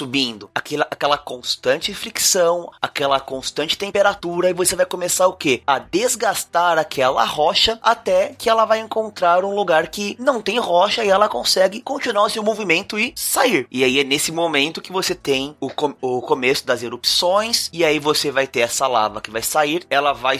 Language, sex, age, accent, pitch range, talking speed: Portuguese, male, 20-39, Brazilian, 135-185 Hz, 185 wpm